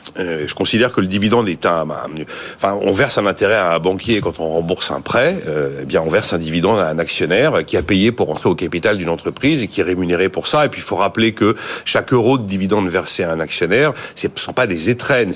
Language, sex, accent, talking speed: French, male, French, 270 wpm